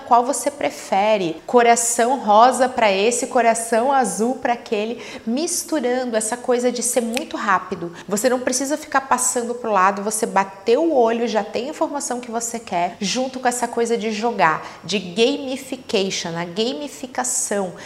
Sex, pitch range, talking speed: female, 210-255 Hz, 160 wpm